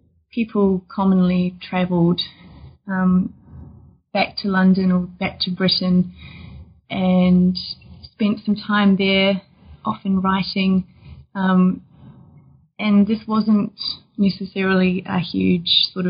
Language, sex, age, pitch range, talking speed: English, female, 20-39, 180-200 Hz, 95 wpm